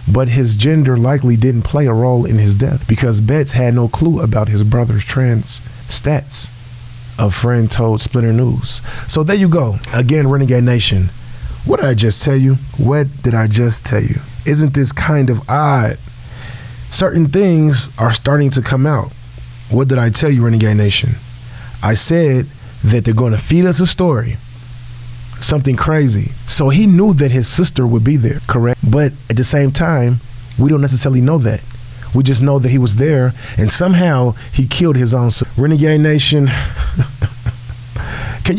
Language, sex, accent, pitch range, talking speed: English, male, American, 120-140 Hz, 175 wpm